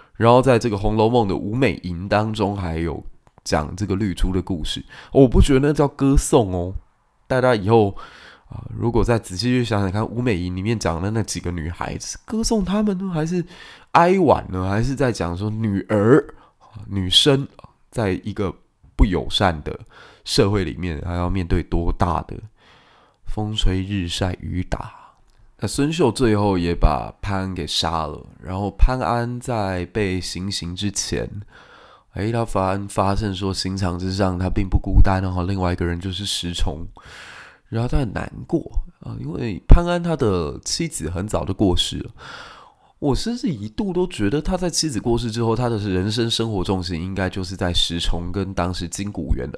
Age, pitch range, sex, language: 20-39, 90-120 Hz, male, Chinese